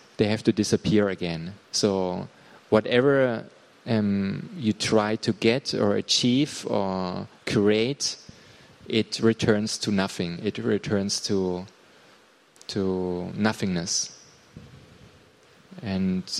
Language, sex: Thai, male